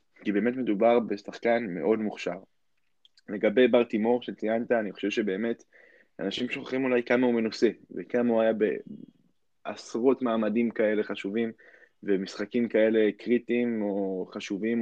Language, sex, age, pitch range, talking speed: Hebrew, male, 20-39, 100-115 Hz, 130 wpm